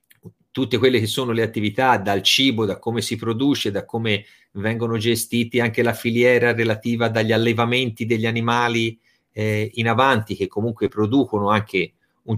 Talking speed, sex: 155 wpm, male